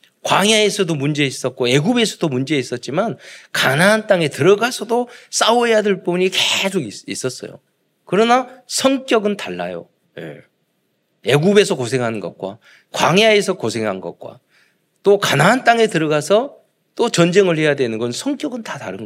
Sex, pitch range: male, 130-215 Hz